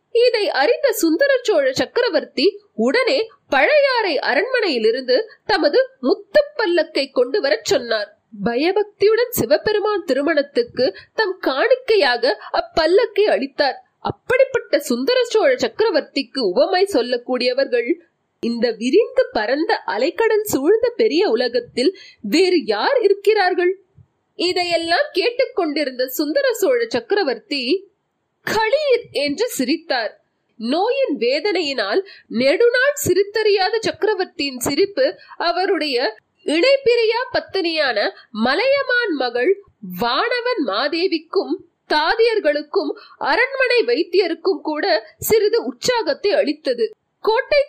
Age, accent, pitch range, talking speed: 30-49, native, 290-445 Hz, 55 wpm